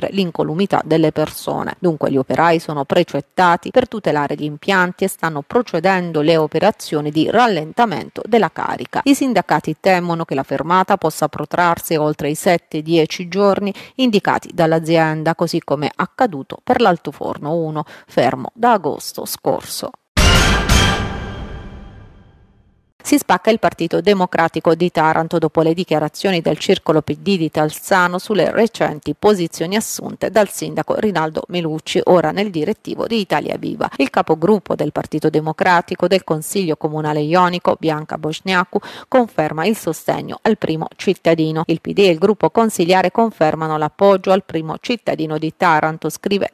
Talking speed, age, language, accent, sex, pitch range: 140 wpm, 30-49, Italian, native, female, 155-195 Hz